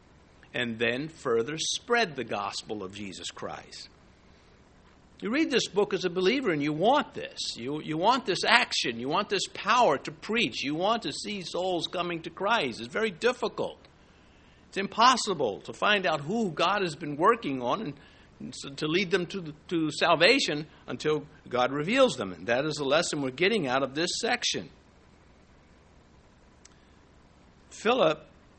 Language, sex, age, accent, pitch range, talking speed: English, male, 60-79, American, 130-195 Hz, 160 wpm